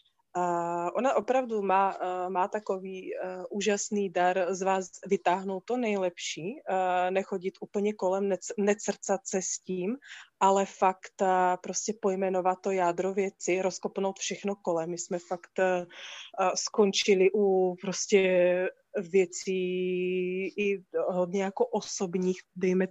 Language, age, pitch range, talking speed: Czech, 20-39, 180-195 Hz, 100 wpm